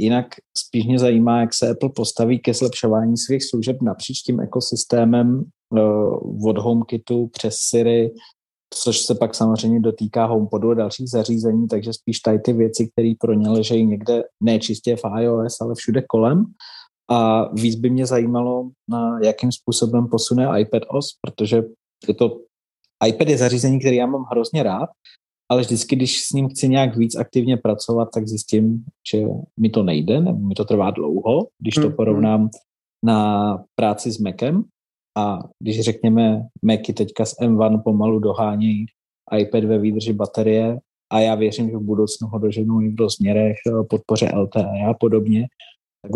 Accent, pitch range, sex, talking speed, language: native, 110-120 Hz, male, 155 wpm, Czech